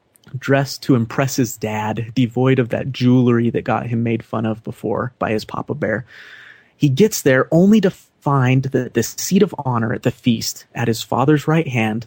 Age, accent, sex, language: 30-49, American, male, English